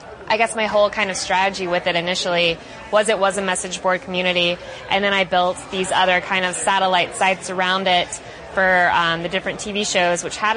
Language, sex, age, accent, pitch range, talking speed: English, female, 20-39, American, 175-200 Hz, 210 wpm